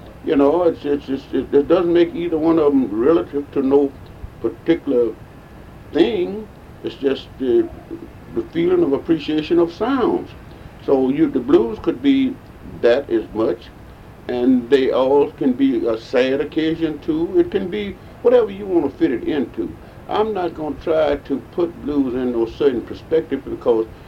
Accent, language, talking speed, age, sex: American, English, 165 wpm, 60-79, male